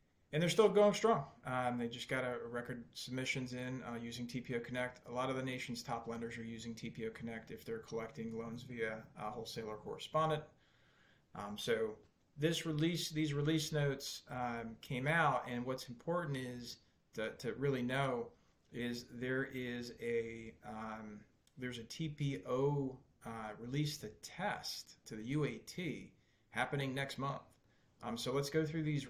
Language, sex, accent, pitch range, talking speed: English, male, American, 115-140 Hz, 160 wpm